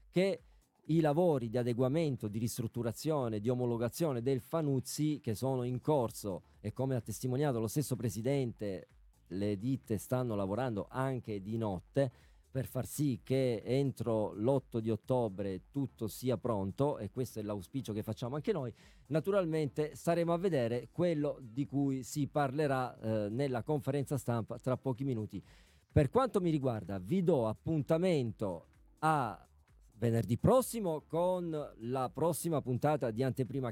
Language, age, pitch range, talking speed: Italian, 40-59, 115-155 Hz, 140 wpm